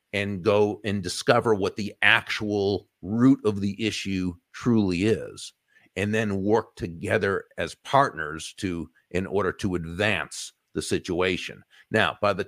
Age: 50-69